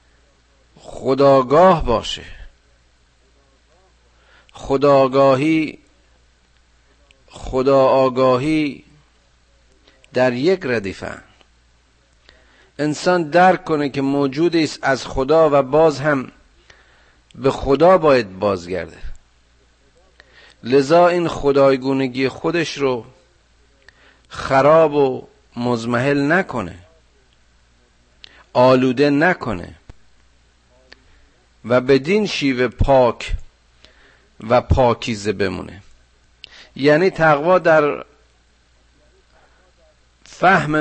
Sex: male